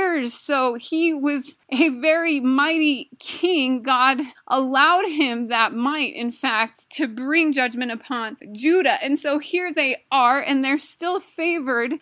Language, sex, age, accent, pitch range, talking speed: English, female, 30-49, American, 245-295 Hz, 140 wpm